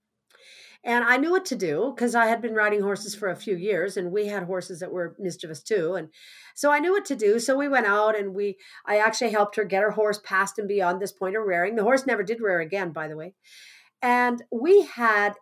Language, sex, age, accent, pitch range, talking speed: English, female, 50-69, American, 185-230 Hz, 240 wpm